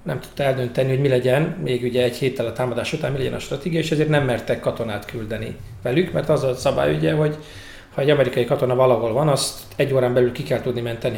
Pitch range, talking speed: 115-140 Hz, 235 wpm